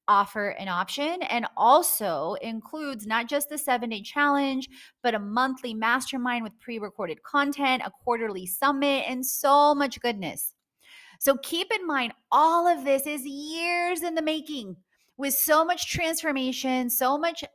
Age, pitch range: 30-49, 230-295 Hz